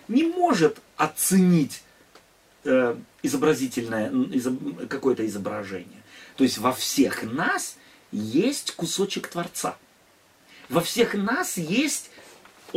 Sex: male